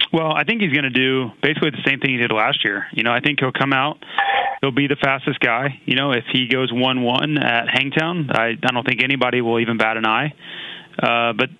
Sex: male